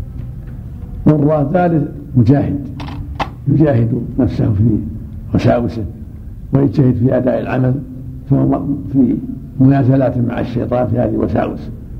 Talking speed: 90 wpm